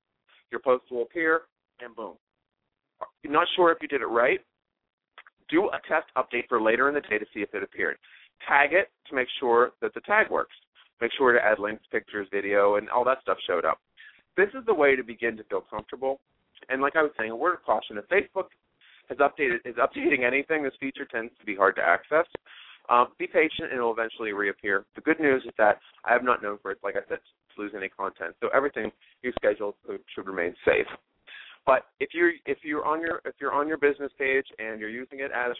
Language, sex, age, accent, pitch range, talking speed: English, male, 30-49, American, 120-155 Hz, 225 wpm